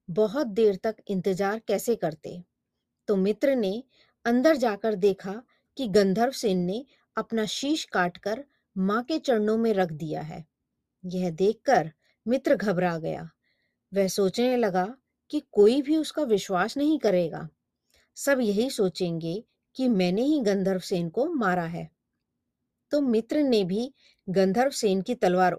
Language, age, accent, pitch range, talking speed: Hindi, 30-49, native, 190-250 Hz, 135 wpm